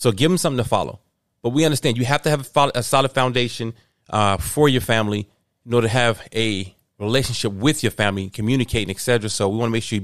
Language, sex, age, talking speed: English, male, 30-49, 235 wpm